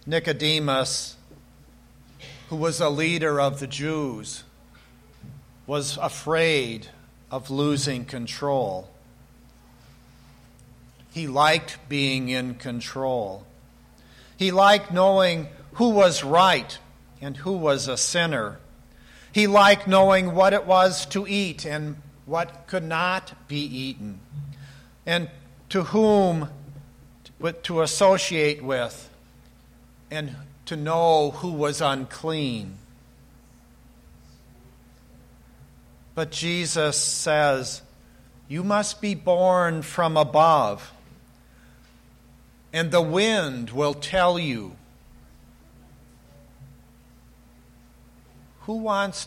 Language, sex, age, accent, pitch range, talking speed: English, male, 50-69, American, 130-175 Hz, 90 wpm